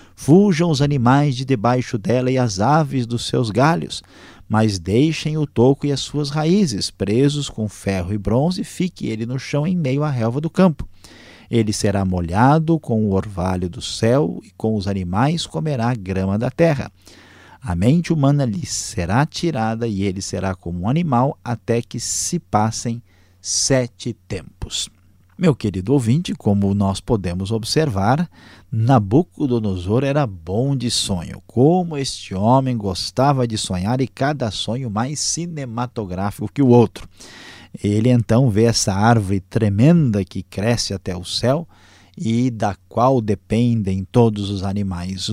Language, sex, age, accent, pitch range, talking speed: Portuguese, male, 50-69, Brazilian, 100-135 Hz, 150 wpm